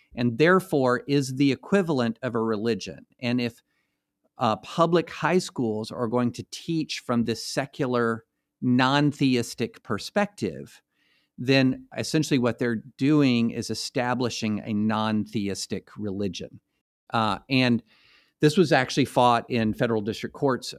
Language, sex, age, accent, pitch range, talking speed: English, male, 50-69, American, 115-140 Hz, 130 wpm